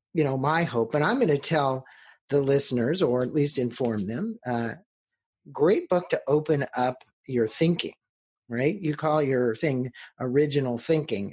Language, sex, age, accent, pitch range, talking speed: English, male, 50-69, American, 125-160 Hz, 165 wpm